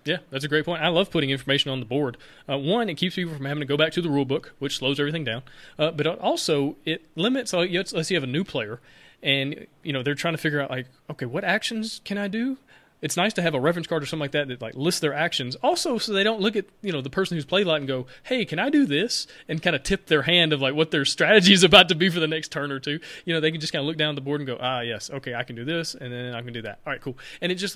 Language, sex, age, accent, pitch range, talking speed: English, male, 30-49, American, 135-175 Hz, 320 wpm